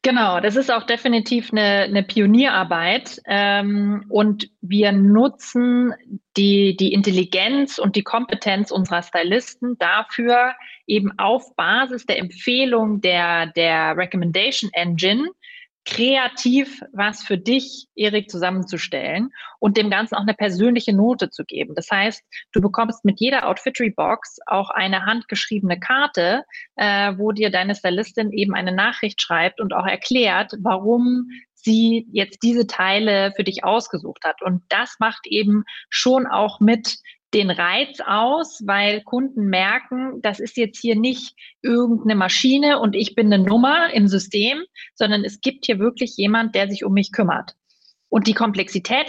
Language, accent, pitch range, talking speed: German, German, 195-245 Hz, 145 wpm